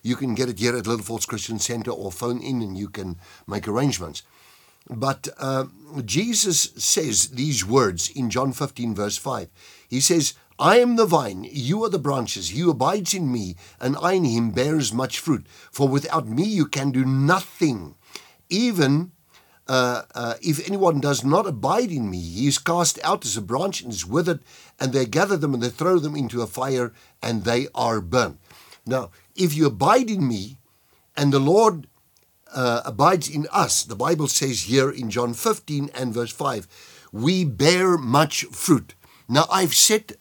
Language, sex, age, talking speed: English, male, 50-69, 180 wpm